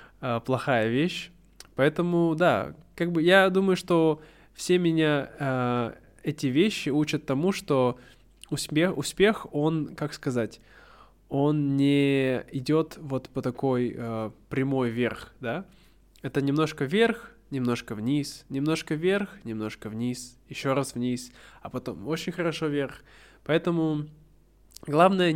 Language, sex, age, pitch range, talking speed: Russian, male, 20-39, 125-160 Hz, 120 wpm